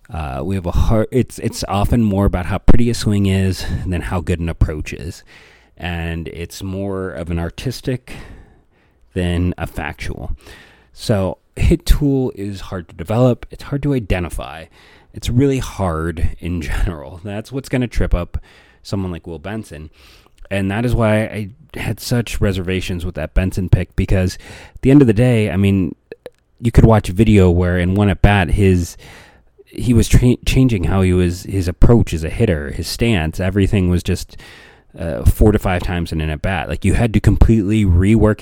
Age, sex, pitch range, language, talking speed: 30-49, male, 85-110 Hz, English, 195 wpm